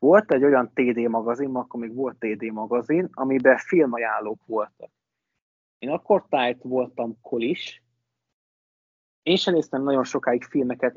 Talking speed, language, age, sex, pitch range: 130 wpm, Hungarian, 20-39, male, 120-145 Hz